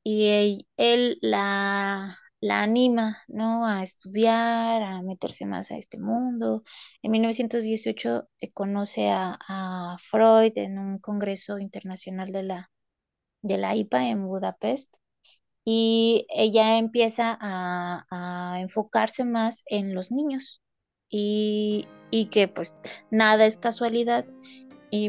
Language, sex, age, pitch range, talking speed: Spanish, female, 20-39, 195-230 Hz, 120 wpm